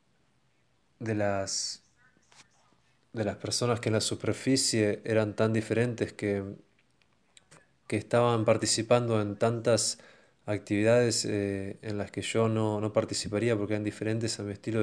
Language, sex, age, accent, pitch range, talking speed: English, male, 20-39, Argentinian, 105-120 Hz, 135 wpm